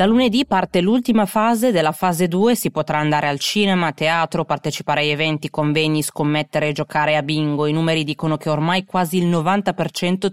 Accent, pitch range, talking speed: native, 150-180 Hz, 180 wpm